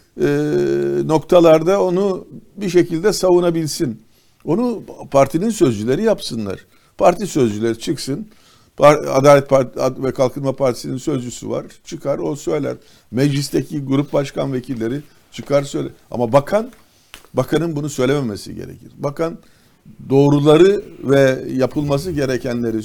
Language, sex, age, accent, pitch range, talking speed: Turkish, male, 50-69, native, 125-155 Hz, 105 wpm